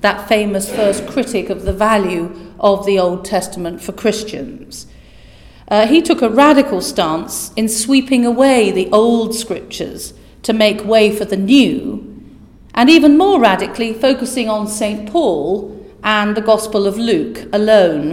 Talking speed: 150 wpm